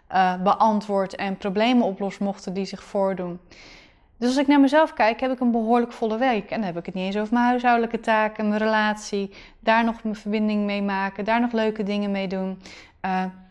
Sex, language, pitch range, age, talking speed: female, Dutch, 195-255 Hz, 20-39, 210 wpm